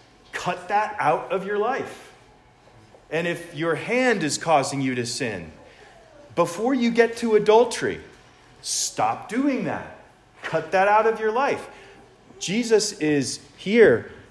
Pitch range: 140-185 Hz